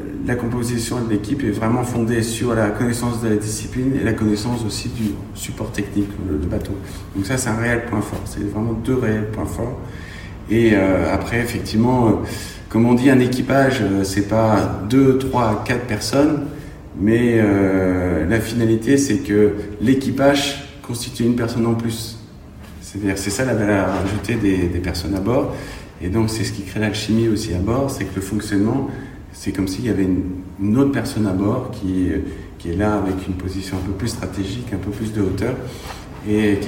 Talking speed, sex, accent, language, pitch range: 185 wpm, male, French, French, 100-120 Hz